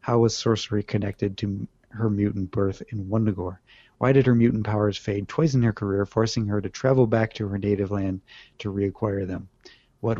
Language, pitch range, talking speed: English, 100-115 Hz, 195 wpm